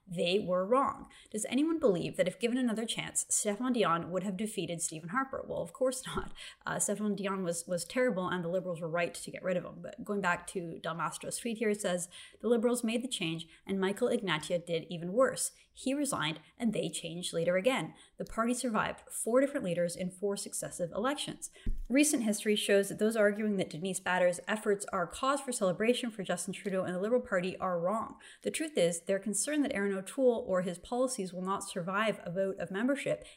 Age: 30-49